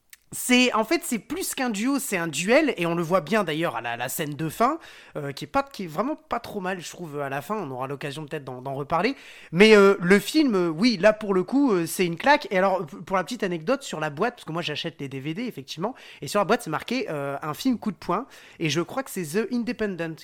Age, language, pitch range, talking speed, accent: 30-49, French, 165-230 Hz, 280 wpm, French